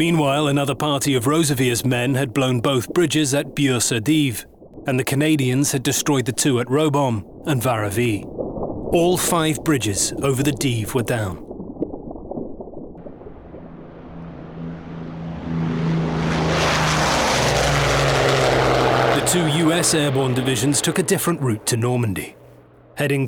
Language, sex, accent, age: English, male, British, 30-49